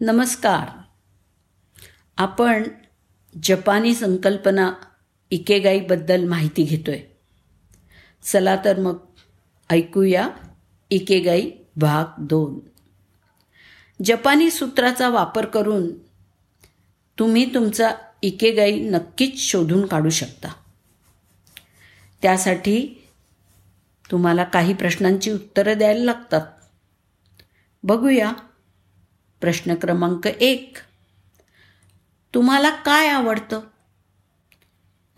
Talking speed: 75 wpm